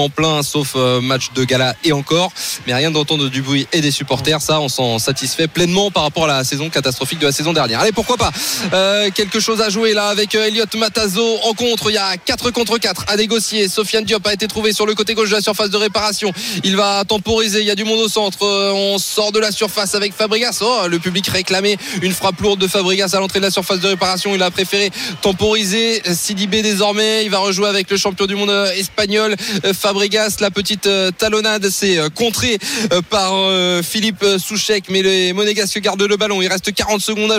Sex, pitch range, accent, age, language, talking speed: male, 190-220 Hz, French, 20-39, French, 225 wpm